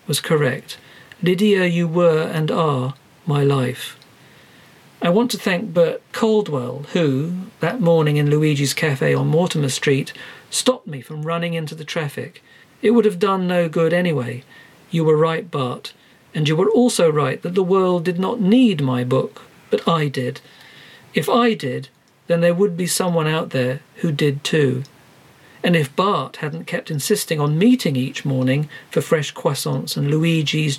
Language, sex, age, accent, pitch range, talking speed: English, male, 50-69, British, 140-180 Hz, 170 wpm